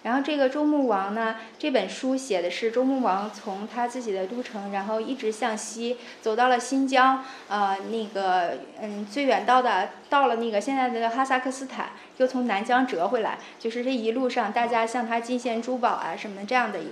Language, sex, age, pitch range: Chinese, female, 20-39, 215-265 Hz